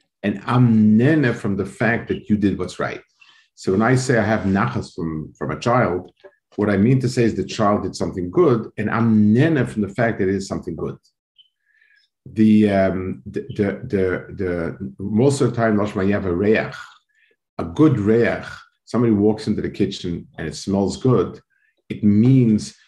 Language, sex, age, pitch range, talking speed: English, male, 50-69, 95-120 Hz, 165 wpm